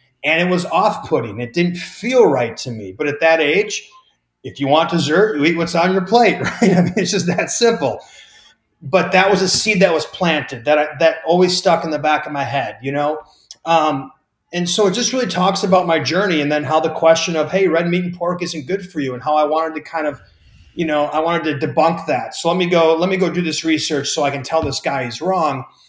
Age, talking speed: 30-49, 255 wpm